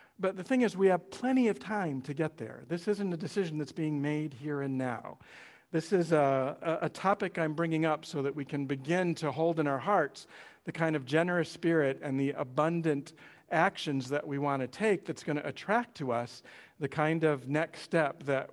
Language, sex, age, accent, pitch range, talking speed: English, male, 50-69, American, 135-170 Hz, 215 wpm